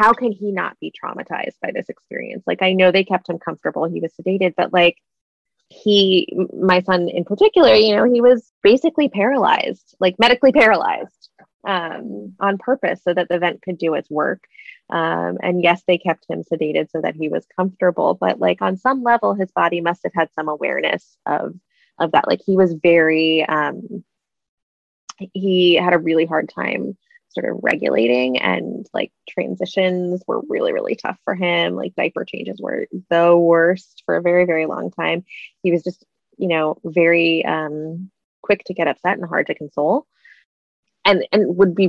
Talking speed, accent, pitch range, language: 180 wpm, American, 165-205 Hz, English